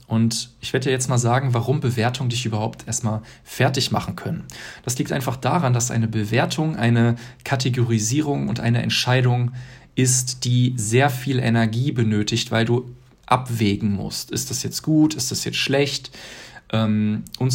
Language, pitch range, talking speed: German, 115-130 Hz, 155 wpm